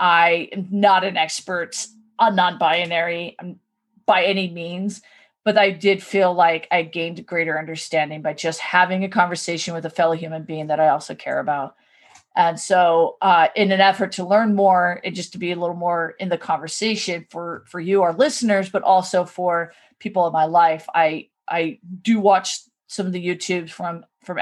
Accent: American